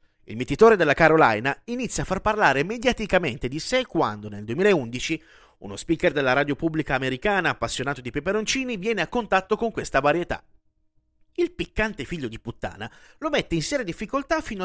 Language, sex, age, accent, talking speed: Italian, male, 30-49, native, 165 wpm